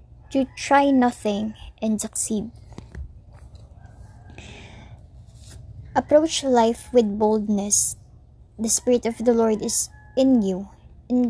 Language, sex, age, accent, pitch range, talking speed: Filipino, male, 20-39, native, 215-250 Hz, 95 wpm